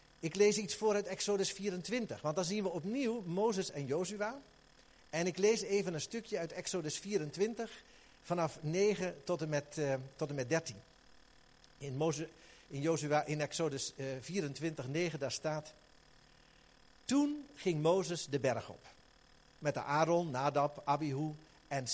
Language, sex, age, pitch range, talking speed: Dutch, male, 50-69, 150-230 Hz, 155 wpm